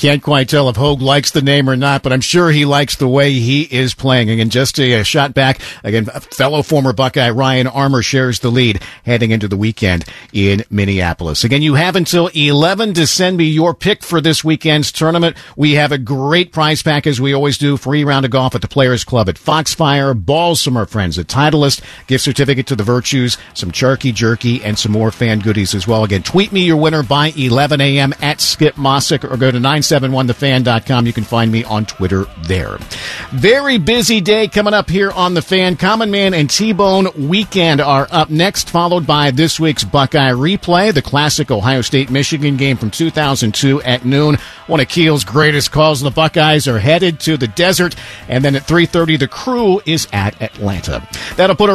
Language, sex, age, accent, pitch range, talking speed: English, male, 50-69, American, 125-170 Hz, 205 wpm